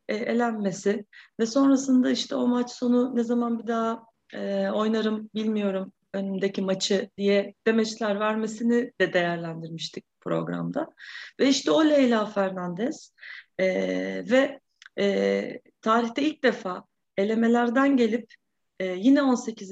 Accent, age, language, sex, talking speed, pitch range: native, 30-49, Turkish, female, 115 wpm, 200-255 Hz